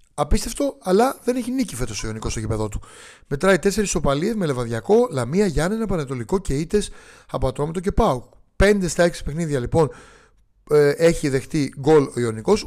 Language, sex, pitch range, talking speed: Greek, male, 130-180 Hz, 170 wpm